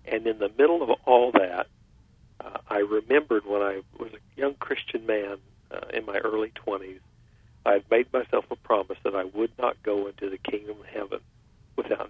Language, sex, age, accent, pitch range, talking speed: English, male, 60-79, American, 105-115 Hz, 195 wpm